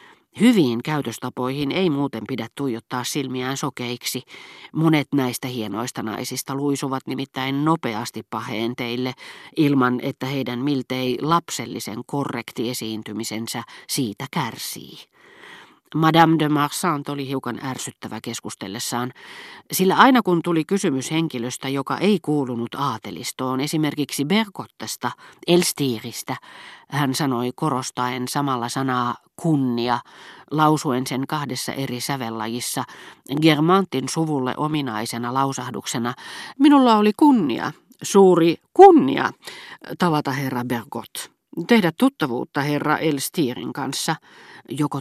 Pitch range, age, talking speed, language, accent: 125-160 Hz, 40-59, 100 wpm, Finnish, native